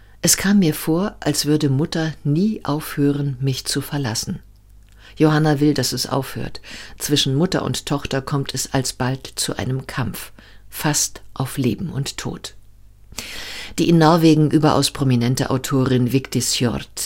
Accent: German